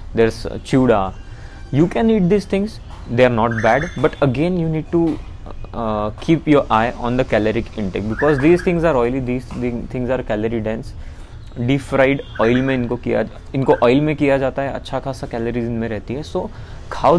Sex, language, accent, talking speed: male, Hindi, native, 195 wpm